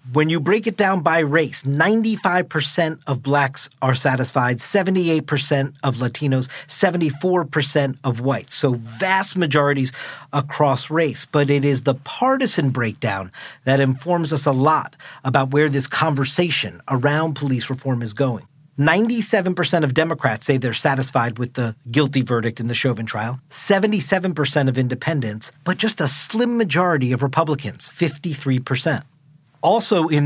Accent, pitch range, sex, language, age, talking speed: American, 135-170 Hz, male, English, 40-59, 140 wpm